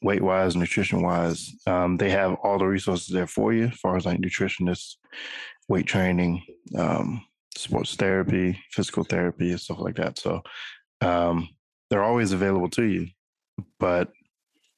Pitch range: 85-100 Hz